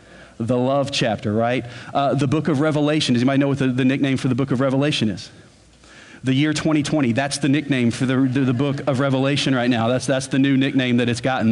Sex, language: male, English